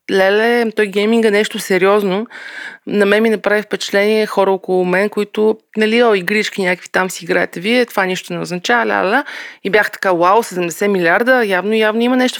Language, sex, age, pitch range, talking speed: Bulgarian, female, 30-49, 195-235 Hz, 185 wpm